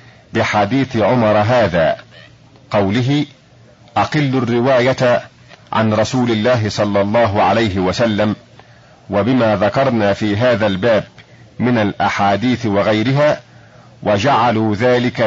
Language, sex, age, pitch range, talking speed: Arabic, male, 50-69, 105-130 Hz, 90 wpm